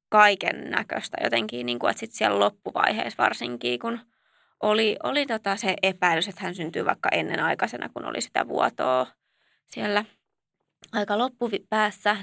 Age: 20-39